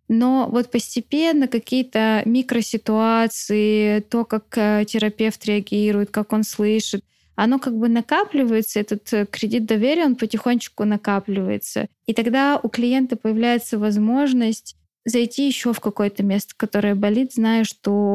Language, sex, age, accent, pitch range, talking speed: Russian, female, 10-29, native, 200-230 Hz, 120 wpm